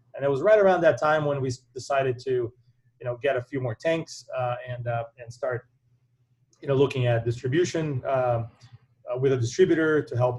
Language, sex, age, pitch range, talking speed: English, male, 30-49, 120-140 Hz, 200 wpm